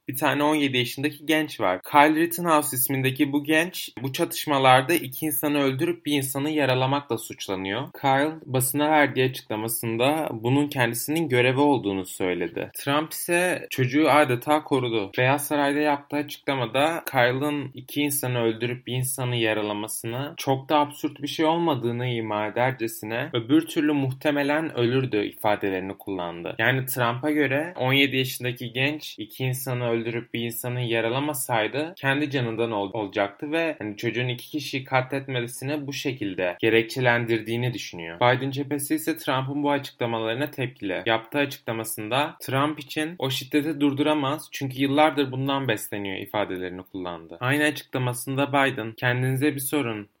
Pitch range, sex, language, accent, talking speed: 120-145 Hz, male, Turkish, native, 135 wpm